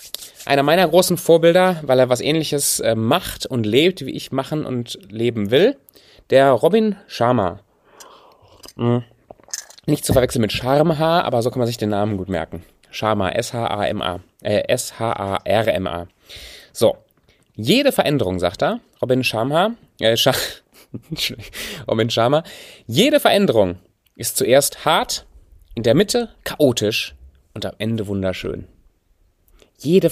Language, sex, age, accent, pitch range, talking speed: German, male, 30-49, German, 100-140 Hz, 125 wpm